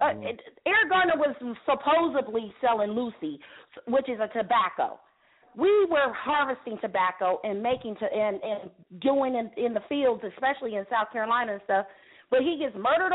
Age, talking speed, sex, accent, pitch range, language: 40-59, 160 wpm, female, American, 220-295 Hz, English